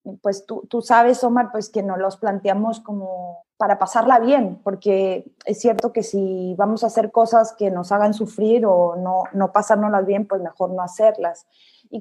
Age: 20-39